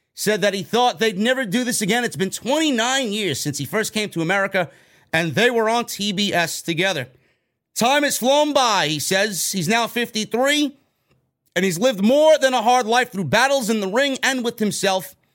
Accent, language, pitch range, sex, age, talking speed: American, English, 160-215 Hz, male, 30-49, 195 wpm